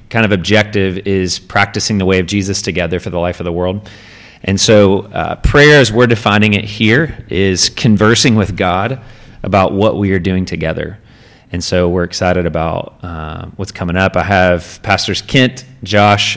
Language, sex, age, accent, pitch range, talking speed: English, male, 30-49, American, 90-105 Hz, 180 wpm